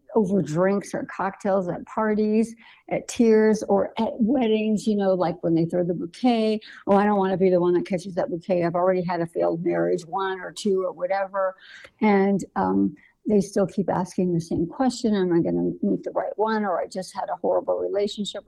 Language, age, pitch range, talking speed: English, 60-79, 180-220 Hz, 215 wpm